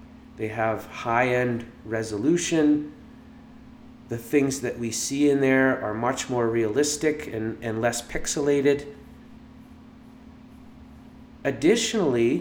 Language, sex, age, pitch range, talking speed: English, male, 30-49, 115-150 Hz, 95 wpm